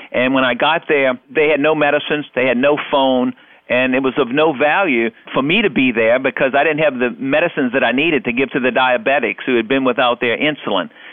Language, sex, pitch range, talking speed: English, male, 125-150 Hz, 235 wpm